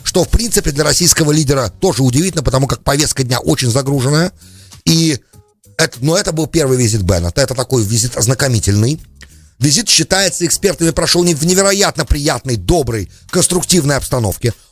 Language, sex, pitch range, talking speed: English, male, 120-165 Hz, 145 wpm